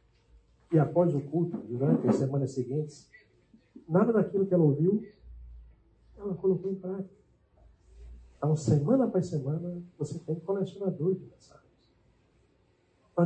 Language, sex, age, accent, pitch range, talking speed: Portuguese, male, 50-69, Brazilian, 135-185 Hz, 120 wpm